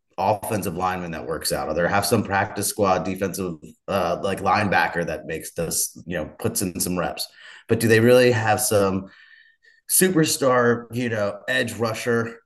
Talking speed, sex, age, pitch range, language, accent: 170 wpm, male, 30-49, 100-120 Hz, English, American